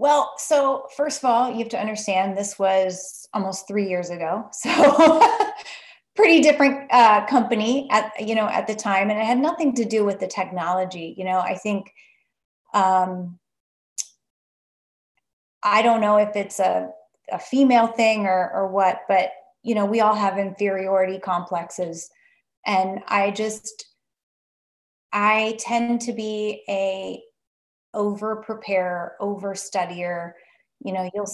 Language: English